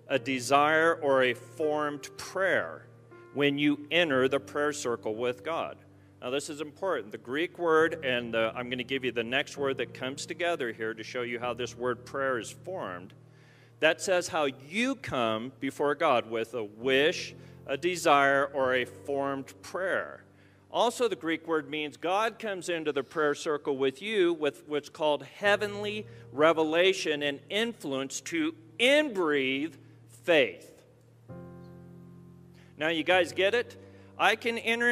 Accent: American